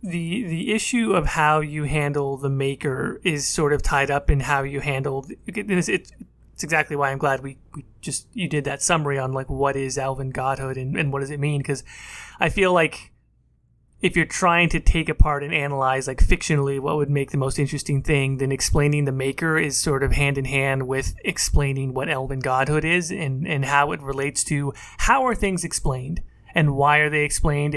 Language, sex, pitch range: English, male, 135-165 Hz